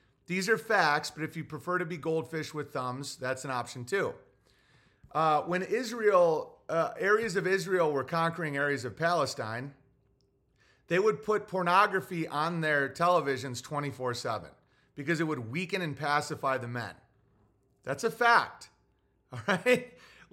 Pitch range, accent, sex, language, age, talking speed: 130-180 Hz, American, male, English, 30-49, 145 wpm